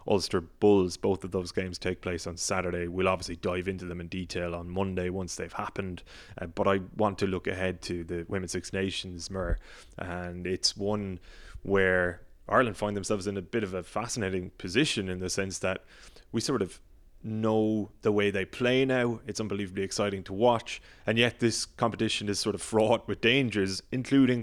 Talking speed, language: 190 wpm, English